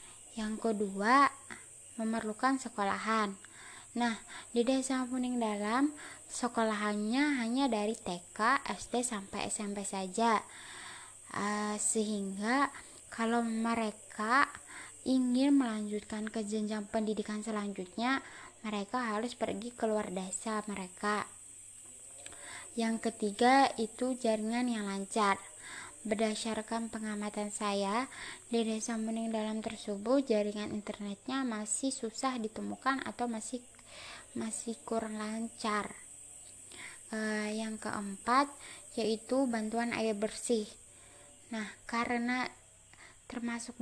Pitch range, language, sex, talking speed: 210-245 Hz, Indonesian, female, 95 wpm